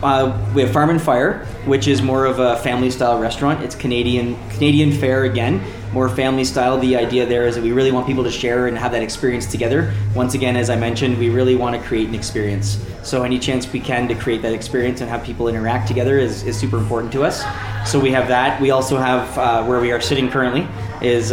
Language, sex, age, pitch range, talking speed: English, male, 20-39, 115-130 Hz, 230 wpm